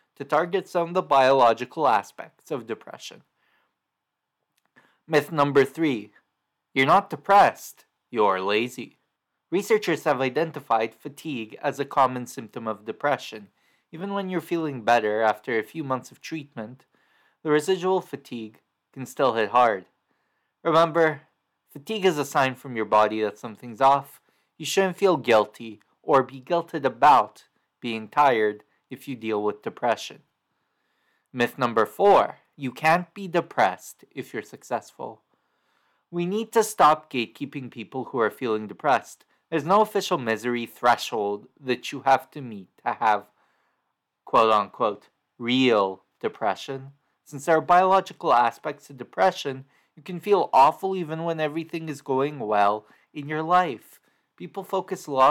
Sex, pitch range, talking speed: male, 120-170 Hz, 140 wpm